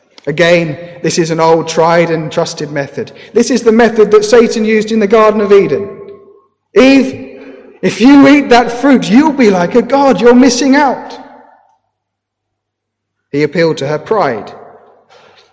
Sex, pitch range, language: male, 140-210 Hz, English